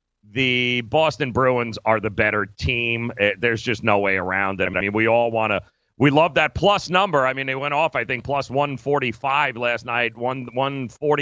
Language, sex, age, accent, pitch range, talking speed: English, male, 40-59, American, 120-155 Hz, 200 wpm